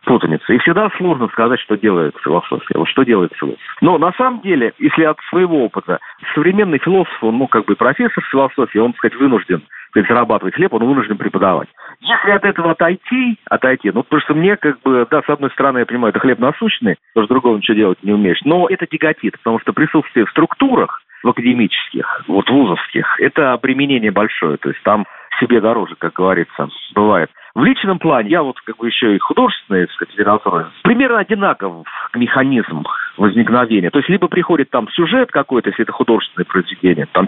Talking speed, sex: 185 wpm, male